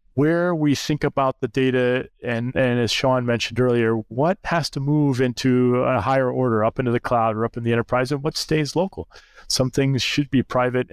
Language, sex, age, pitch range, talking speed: English, male, 30-49, 110-125 Hz, 210 wpm